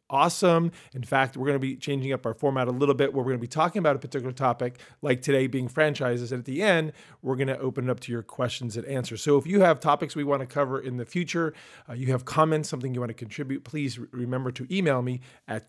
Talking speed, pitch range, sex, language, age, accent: 270 wpm, 125-160 Hz, male, English, 40-59, American